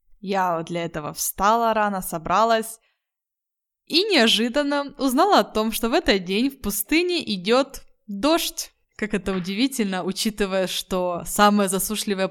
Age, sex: 20-39, female